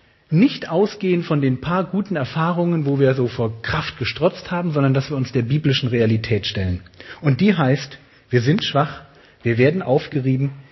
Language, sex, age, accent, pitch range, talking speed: German, male, 40-59, German, 120-185 Hz, 175 wpm